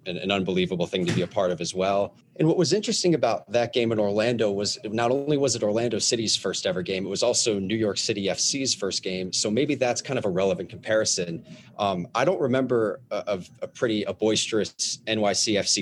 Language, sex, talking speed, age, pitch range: English, male, 215 wpm, 30-49, 95-120 Hz